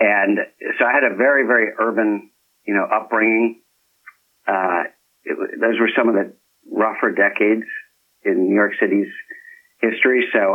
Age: 50-69